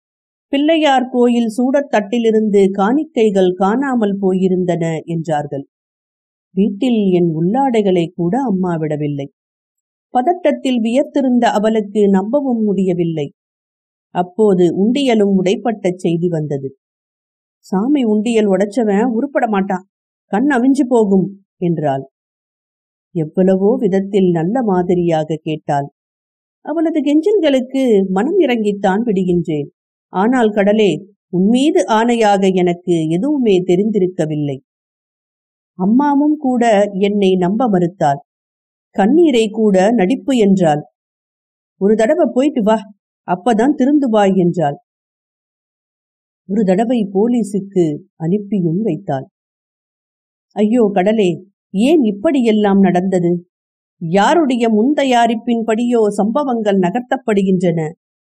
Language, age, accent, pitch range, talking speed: Tamil, 50-69, native, 180-240 Hz, 80 wpm